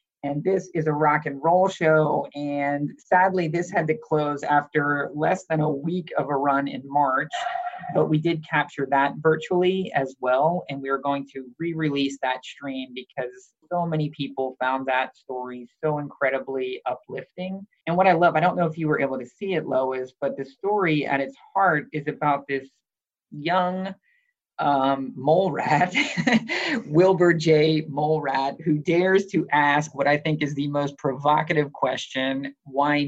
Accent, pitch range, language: American, 135-170 Hz, English